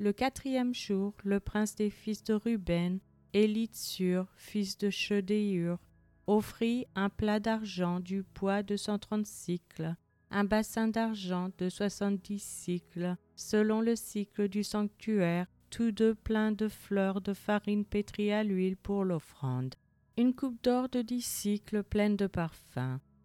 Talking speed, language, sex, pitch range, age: 140 wpm, French, female, 180-220 Hz, 40-59